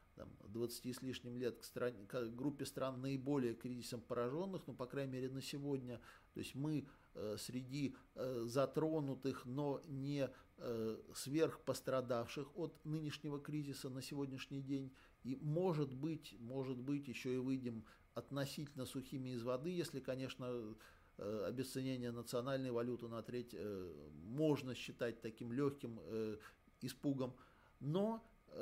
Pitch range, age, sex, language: 120-145 Hz, 50-69, male, Russian